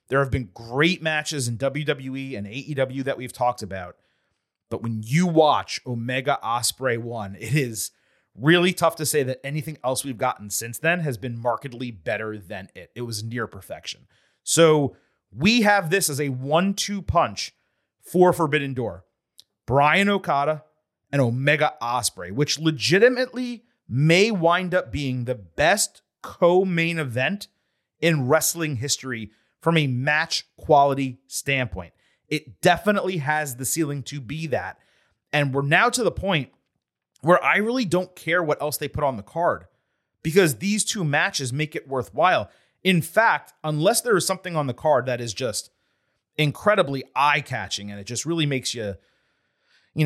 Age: 30-49